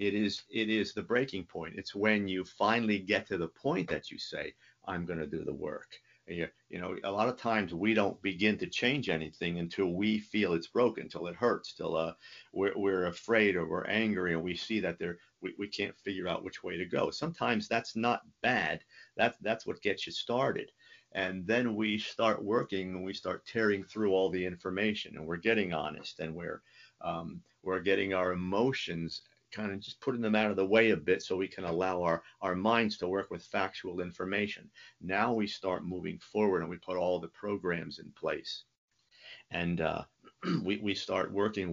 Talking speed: 205 wpm